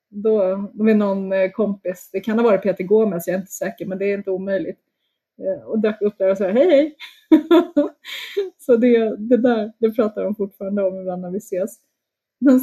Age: 20-39